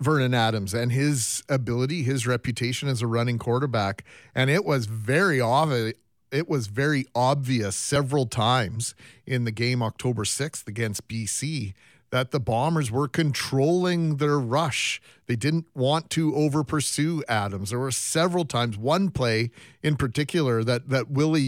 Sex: male